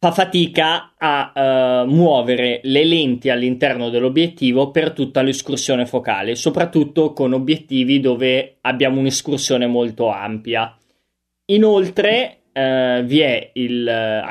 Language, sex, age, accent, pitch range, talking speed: Italian, male, 20-39, native, 125-150 Hz, 115 wpm